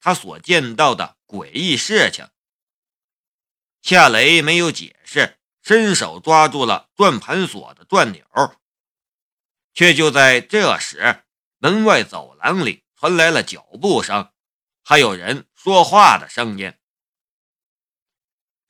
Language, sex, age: Chinese, male, 50-69